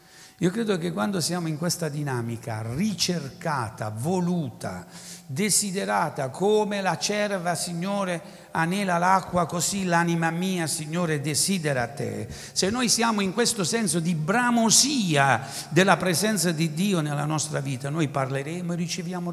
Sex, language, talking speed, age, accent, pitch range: male, Italian, 130 wpm, 60-79, native, 145-200 Hz